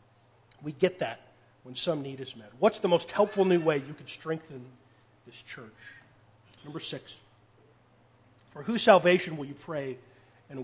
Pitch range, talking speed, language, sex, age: 120-180 Hz, 160 wpm, English, male, 40-59